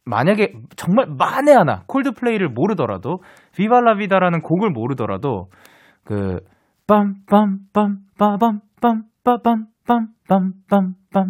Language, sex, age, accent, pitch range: Korean, male, 20-39, native, 140-235 Hz